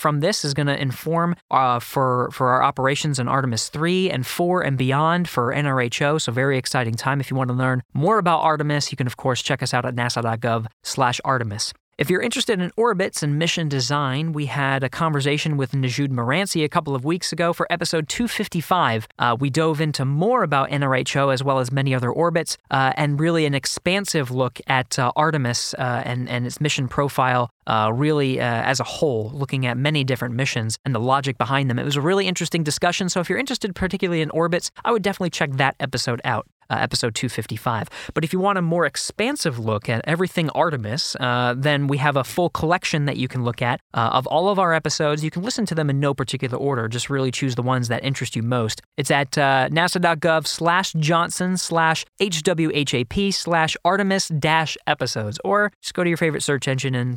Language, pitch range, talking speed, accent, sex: English, 125-165 Hz, 210 wpm, American, male